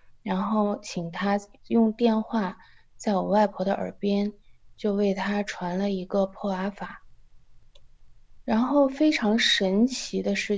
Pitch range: 190-230 Hz